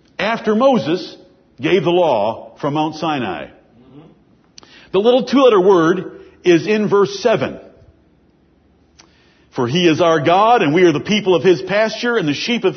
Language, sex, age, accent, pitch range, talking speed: English, male, 60-79, American, 180-270 Hz, 155 wpm